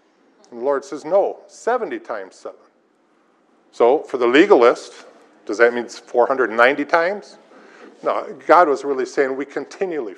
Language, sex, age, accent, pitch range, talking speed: English, male, 50-69, American, 145-225 Hz, 140 wpm